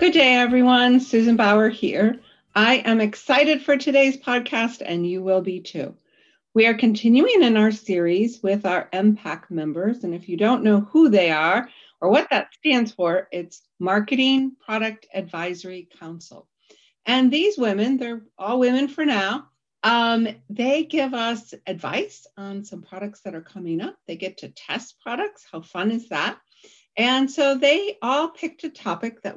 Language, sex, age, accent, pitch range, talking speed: English, female, 50-69, American, 195-270 Hz, 170 wpm